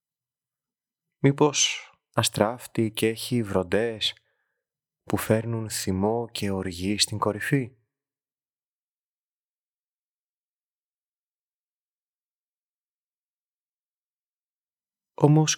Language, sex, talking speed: Greek, male, 50 wpm